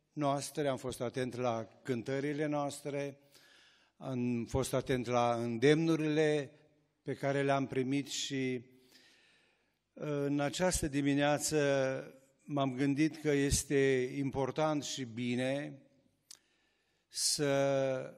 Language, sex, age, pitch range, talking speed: Romanian, male, 60-79, 125-150 Hz, 90 wpm